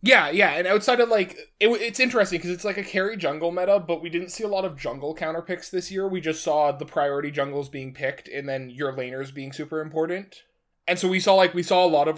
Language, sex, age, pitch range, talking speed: English, male, 20-39, 135-180 Hz, 255 wpm